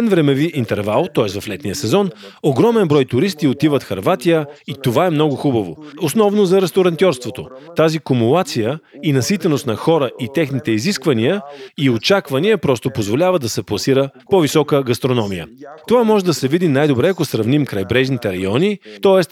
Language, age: Bulgarian, 40-59